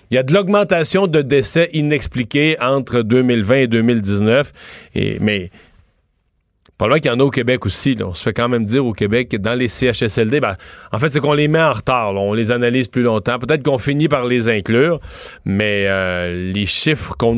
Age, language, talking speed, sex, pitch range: 30-49, French, 200 wpm, male, 100-130 Hz